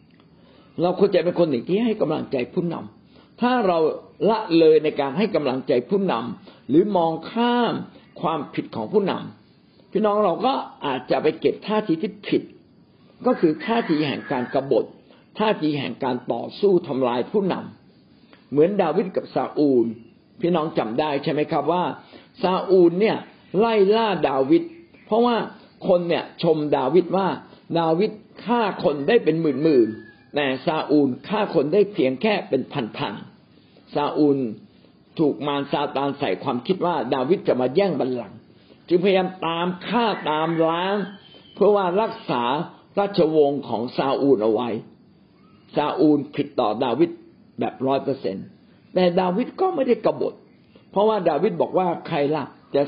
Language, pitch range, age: Thai, 145-210 Hz, 60-79